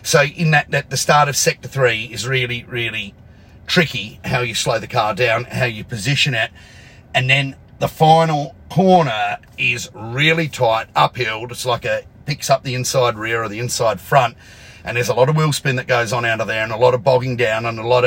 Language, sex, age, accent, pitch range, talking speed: English, male, 40-59, Australian, 110-135 Hz, 220 wpm